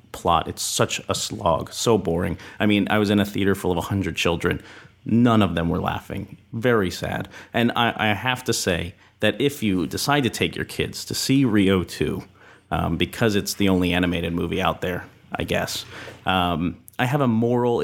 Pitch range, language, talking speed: 90-115 Hz, English, 195 wpm